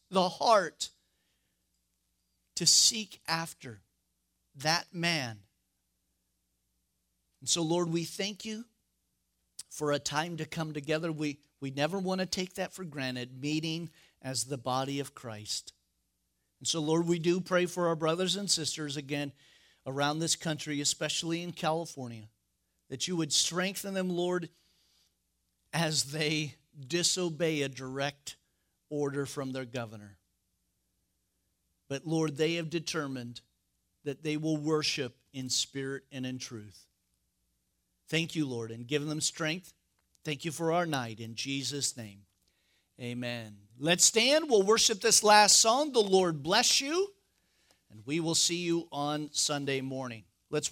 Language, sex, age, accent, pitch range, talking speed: English, male, 50-69, American, 120-165 Hz, 140 wpm